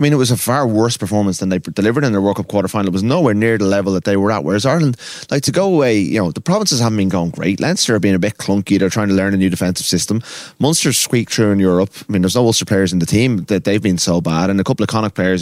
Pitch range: 95-120 Hz